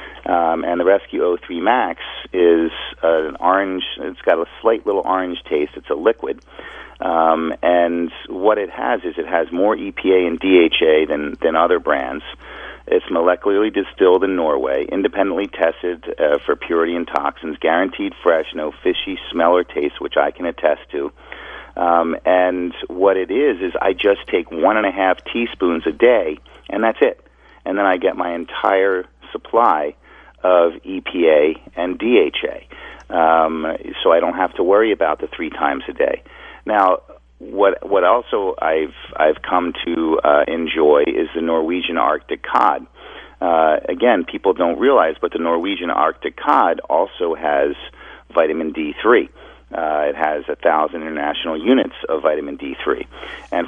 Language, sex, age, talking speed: English, male, 40-59, 160 wpm